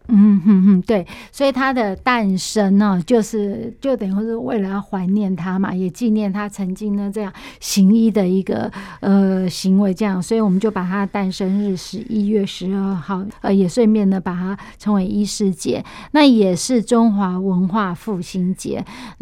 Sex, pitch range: female, 195-230 Hz